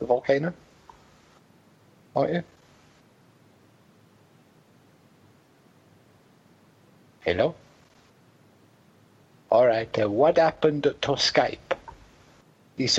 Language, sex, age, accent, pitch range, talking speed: English, male, 60-79, British, 100-140 Hz, 55 wpm